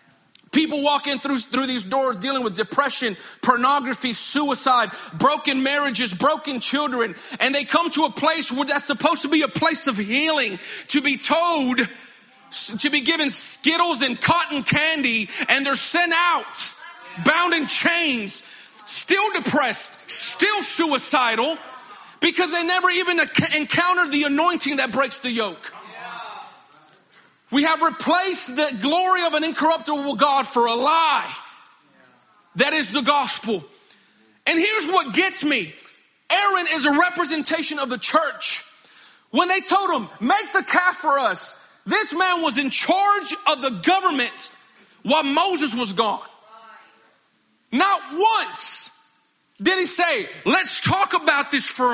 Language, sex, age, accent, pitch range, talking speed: English, male, 40-59, American, 255-340 Hz, 140 wpm